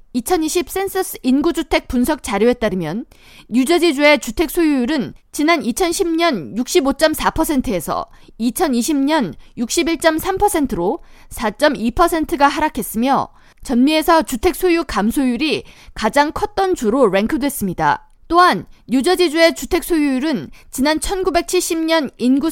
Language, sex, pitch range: Korean, female, 245-340 Hz